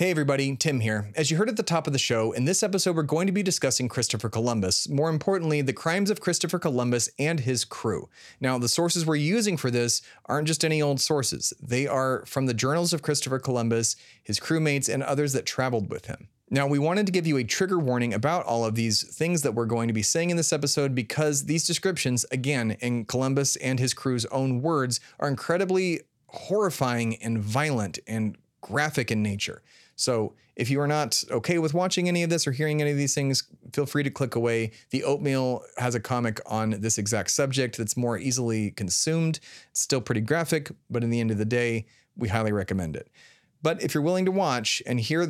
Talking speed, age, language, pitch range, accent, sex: 215 wpm, 30-49, English, 120-155 Hz, American, male